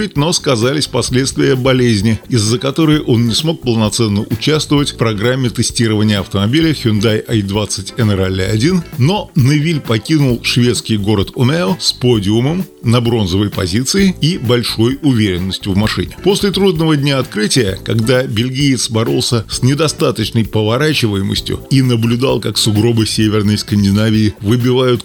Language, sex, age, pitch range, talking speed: Russian, male, 30-49, 110-145 Hz, 120 wpm